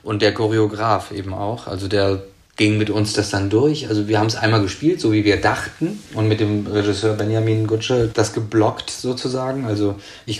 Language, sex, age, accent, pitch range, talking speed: German, male, 30-49, German, 105-120 Hz, 195 wpm